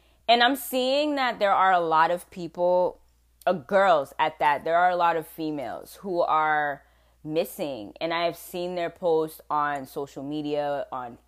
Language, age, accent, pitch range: English, 20-39, American, 140-190 Hz